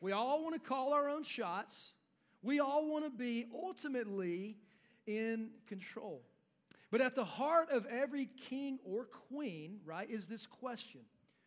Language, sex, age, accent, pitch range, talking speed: English, male, 40-59, American, 200-270 Hz, 150 wpm